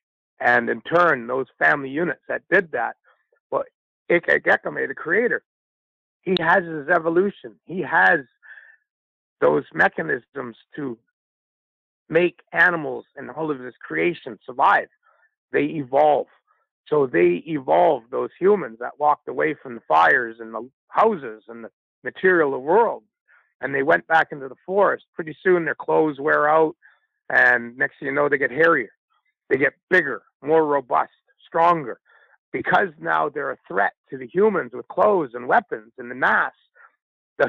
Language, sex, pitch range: English, male, 135-220 Hz